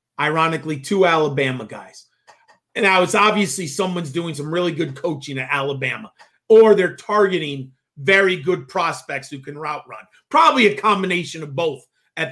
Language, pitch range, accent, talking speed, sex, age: English, 170-230 Hz, American, 155 wpm, male, 40-59